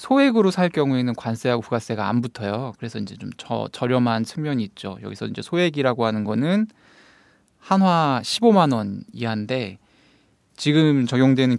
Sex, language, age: male, Korean, 20-39